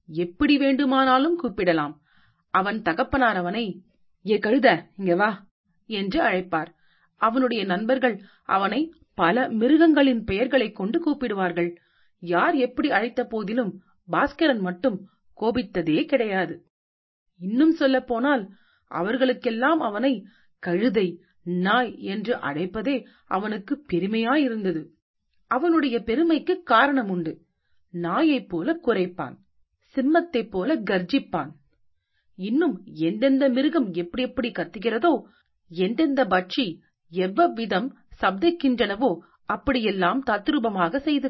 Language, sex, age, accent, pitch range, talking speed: Tamil, female, 40-59, native, 180-265 Hz, 85 wpm